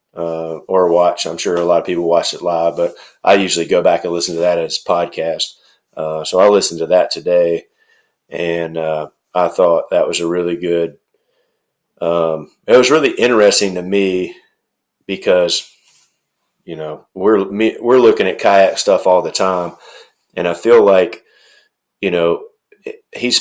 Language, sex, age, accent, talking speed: English, male, 30-49, American, 170 wpm